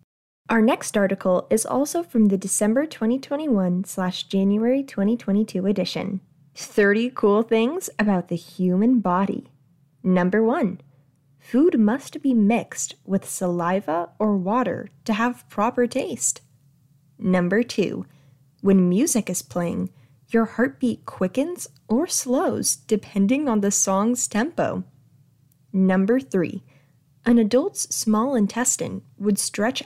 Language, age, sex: English, 10-29, female